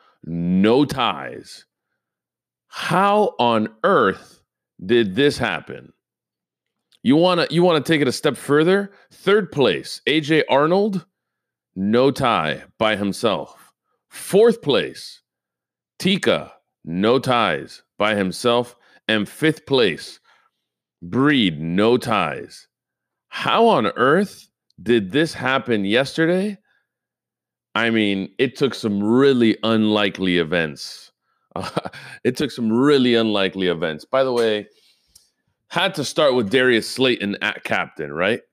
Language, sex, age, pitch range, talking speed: English, male, 40-59, 95-130 Hz, 115 wpm